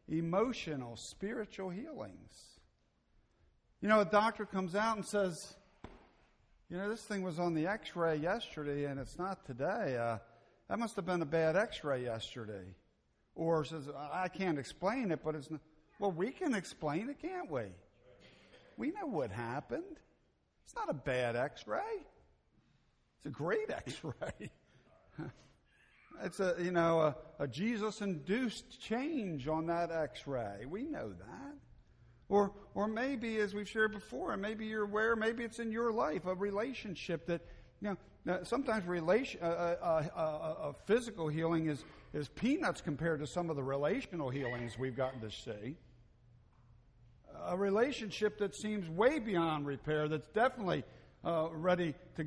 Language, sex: English, male